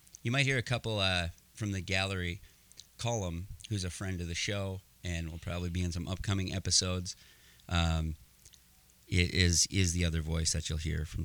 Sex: male